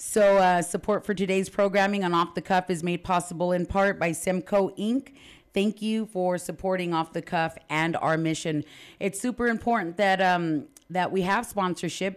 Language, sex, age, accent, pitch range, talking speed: English, female, 30-49, American, 165-195 Hz, 180 wpm